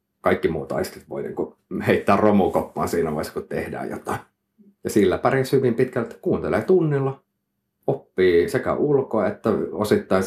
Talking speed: 135 wpm